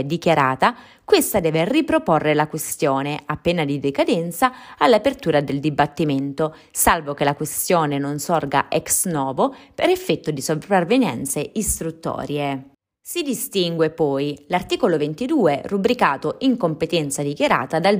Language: Italian